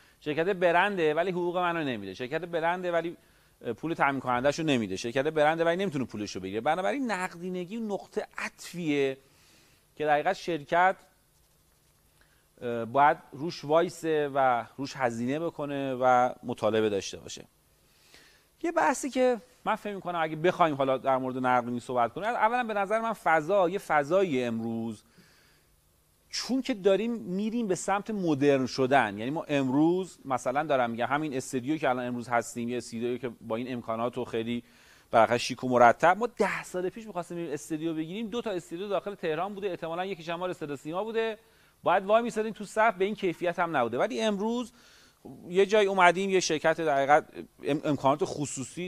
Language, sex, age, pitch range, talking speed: Persian, male, 40-59, 130-185 Hz, 165 wpm